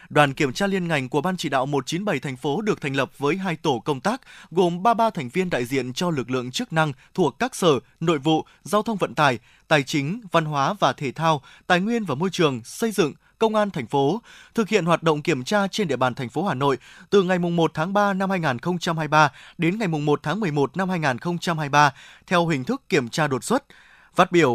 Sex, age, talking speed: male, 20-39, 230 wpm